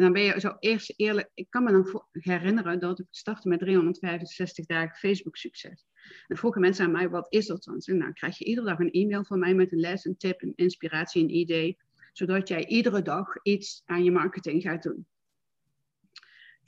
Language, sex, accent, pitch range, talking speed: Dutch, female, Dutch, 175-215 Hz, 210 wpm